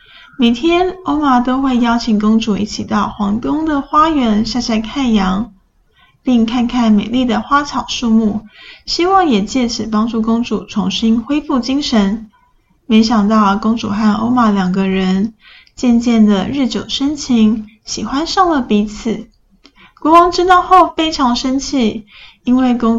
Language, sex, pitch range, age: Chinese, female, 210-265 Hz, 10-29